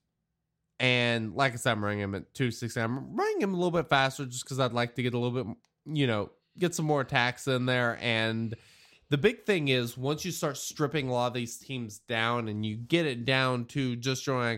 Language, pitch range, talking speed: English, 115-150 Hz, 230 wpm